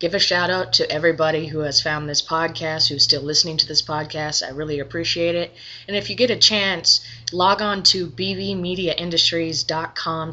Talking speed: 175 wpm